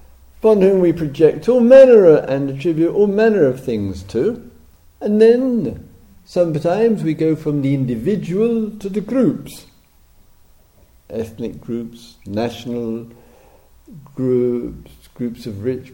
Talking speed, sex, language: 115 wpm, male, English